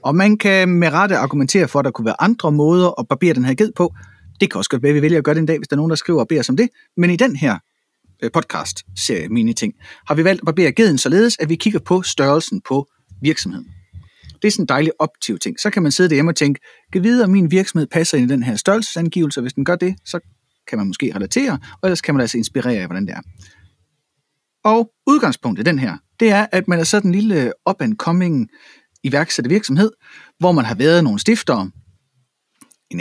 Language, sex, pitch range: Danish, male, 135-200 Hz